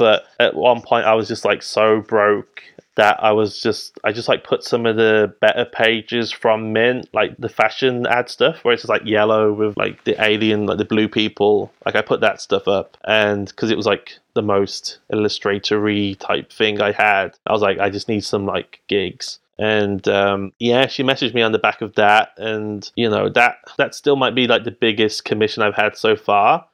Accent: British